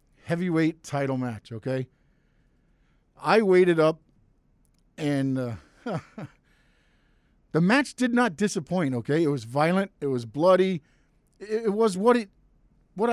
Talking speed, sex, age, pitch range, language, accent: 125 wpm, male, 50-69, 140-185 Hz, English, American